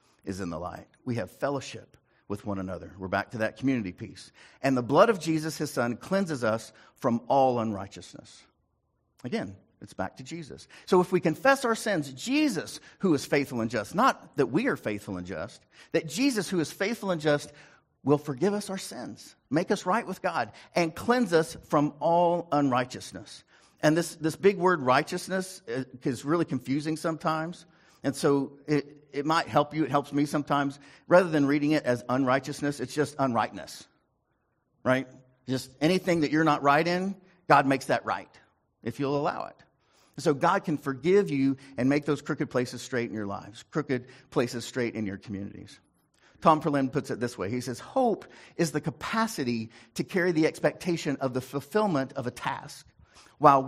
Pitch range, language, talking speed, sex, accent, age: 125-165 Hz, English, 180 wpm, male, American, 50-69